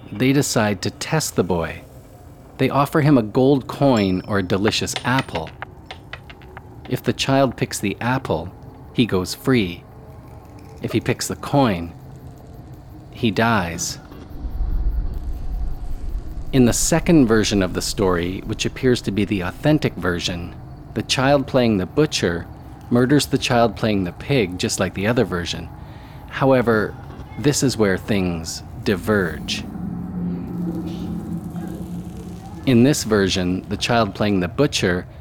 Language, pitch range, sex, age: English, 95-130 Hz, male, 40-59